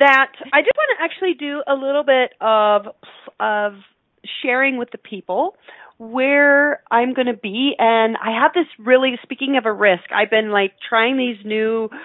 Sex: female